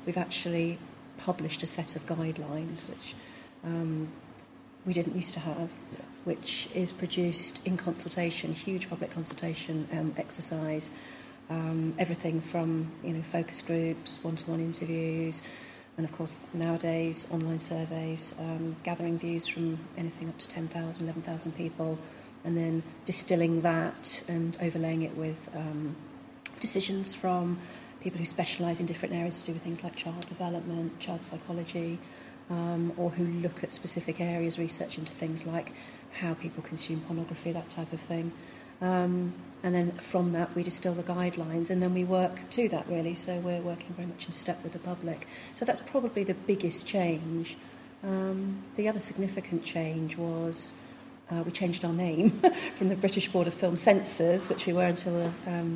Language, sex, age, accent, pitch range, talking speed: English, female, 40-59, British, 165-180 Hz, 160 wpm